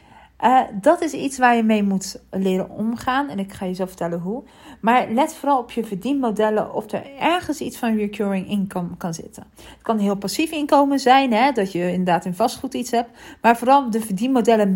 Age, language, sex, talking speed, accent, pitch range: 40-59, Dutch, female, 210 wpm, Dutch, 195-255 Hz